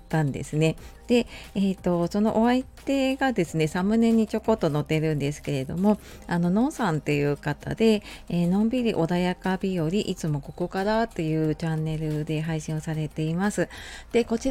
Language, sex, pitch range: Japanese, female, 155-220 Hz